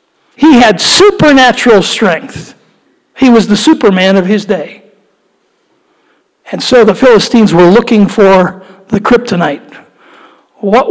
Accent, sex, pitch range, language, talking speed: American, male, 200-245 Hz, English, 115 wpm